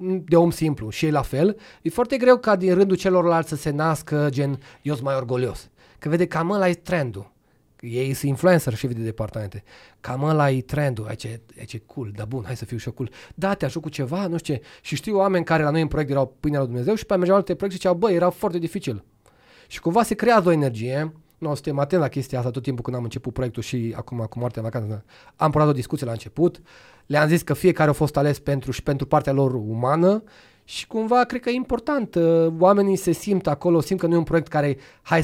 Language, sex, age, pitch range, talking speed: Romanian, male, 30-49, 130-175 Hz, 240 wpm